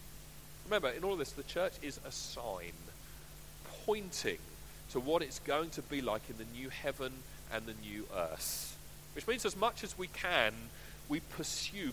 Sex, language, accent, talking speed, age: male, English, British, 175 wpm, 40-59